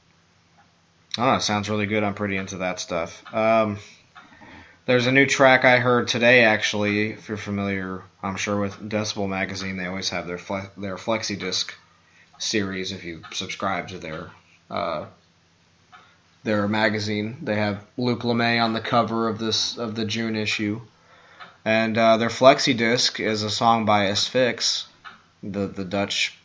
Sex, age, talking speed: male, 20-39, 150 wpm